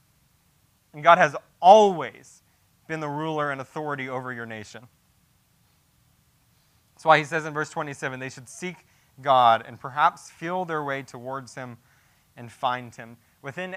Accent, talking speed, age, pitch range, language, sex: American, 150 wpm, 20-39, 130-165 Hz, English, male